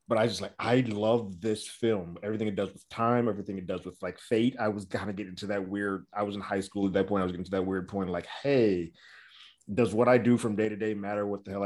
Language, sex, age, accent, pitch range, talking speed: English, male, 30-49, American, 95-120 Hz, 295 wpm